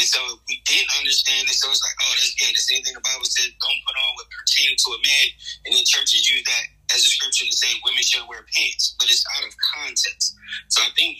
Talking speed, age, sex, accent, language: 255 wpm, 20-39, male, American, English